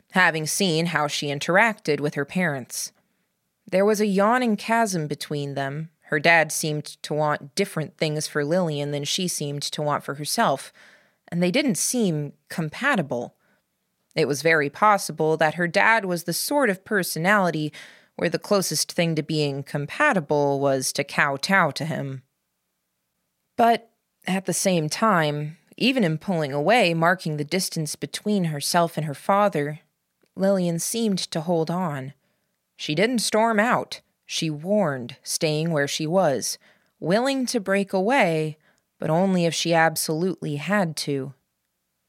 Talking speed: 145 wpm